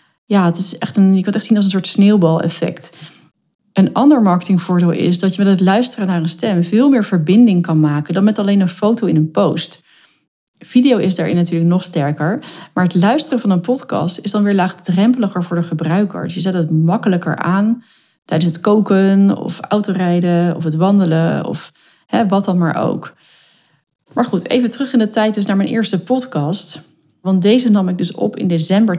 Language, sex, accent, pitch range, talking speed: Dutch, female, Dutch, 175-220 Hz, 200 wpm